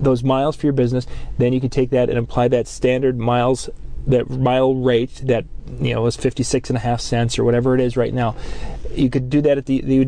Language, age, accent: English, 30-49, American